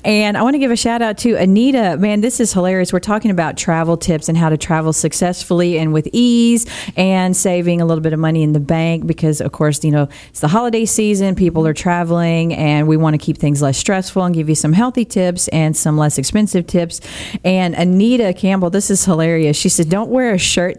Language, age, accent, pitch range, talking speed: English, 40-59, American, 165-225 Hz, 230 wpm